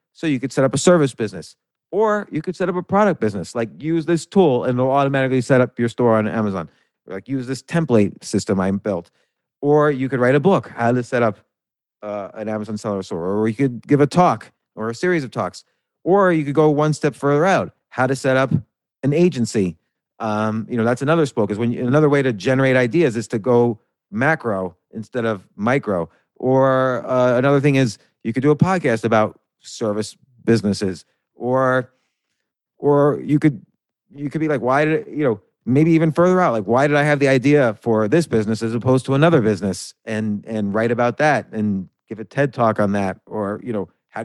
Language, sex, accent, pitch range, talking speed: English, male, American, 110-145 Hz, 210 wpm